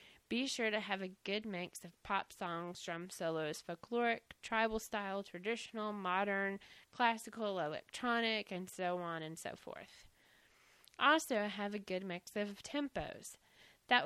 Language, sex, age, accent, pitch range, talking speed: English, female, 20-39, American, 180-225 Hz, 140 wpm